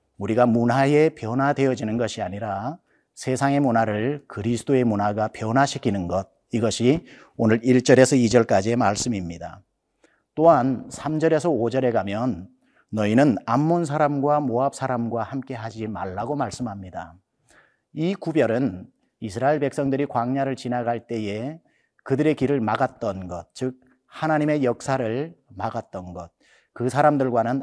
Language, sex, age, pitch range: Korean, male, 40-59, 115-150 Hz